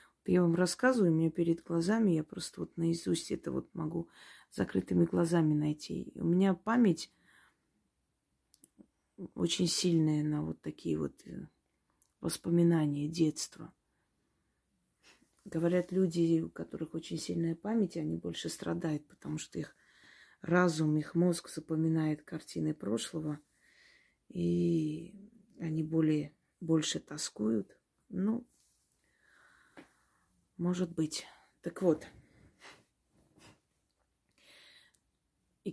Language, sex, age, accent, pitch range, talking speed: Russian, female, 30-49, native, 160-200 Hz, 95 wpm